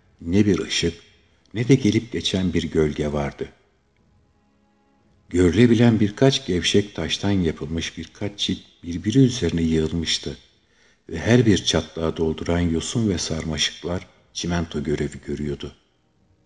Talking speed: 115 wpm